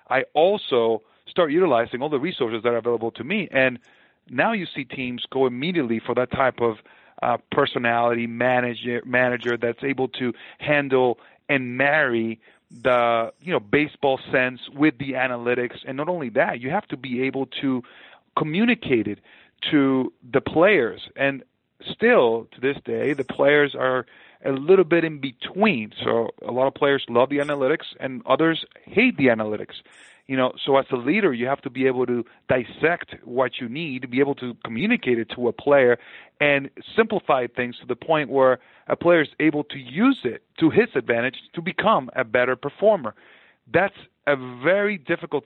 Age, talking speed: 40-59, 175 wpm